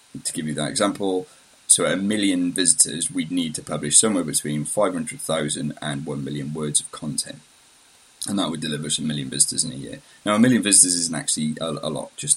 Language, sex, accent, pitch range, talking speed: English, male, British, 75-100 Hz, 210 wpm